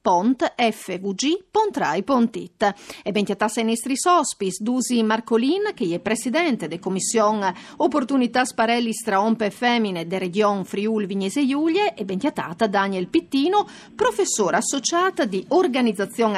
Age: 40-59